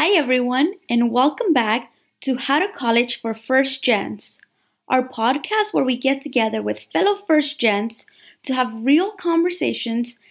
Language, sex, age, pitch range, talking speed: English, female, 20-39, 240-300 Hz, 150 wpm